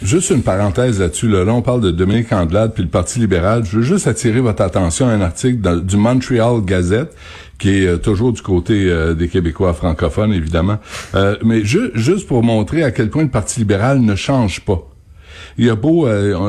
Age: 60-79